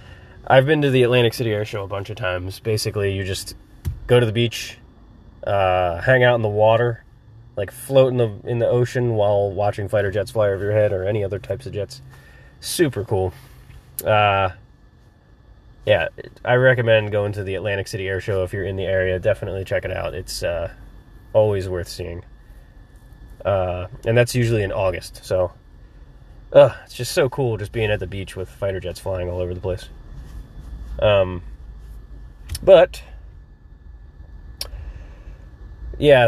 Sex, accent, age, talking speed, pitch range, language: male, American, 20-39, 165 wpm, 85-115 Hz, English